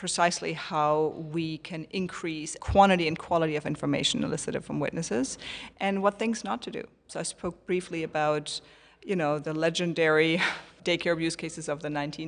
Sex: female